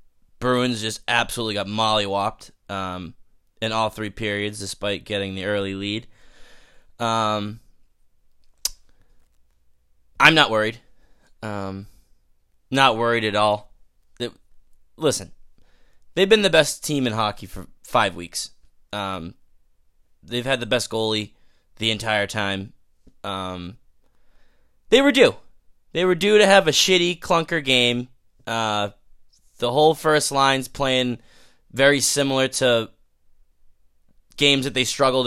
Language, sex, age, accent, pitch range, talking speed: English, male, 20-39, American, 100-130 Hz, 120 wpm